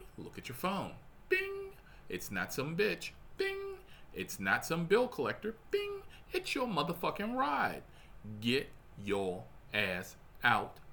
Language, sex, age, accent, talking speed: English, male, 40-59, American, 130 wpm